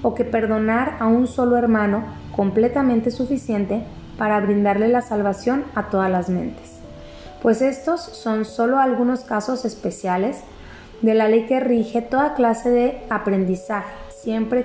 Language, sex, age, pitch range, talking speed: Spanish, female, 20-39, 205-245 Hz, 140 wpm